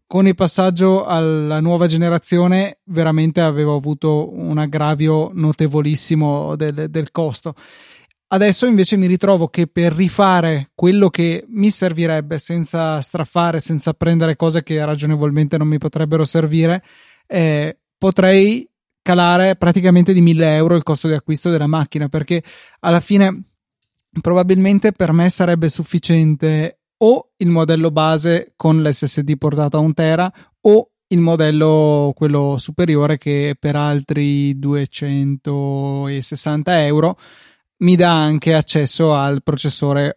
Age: 20-39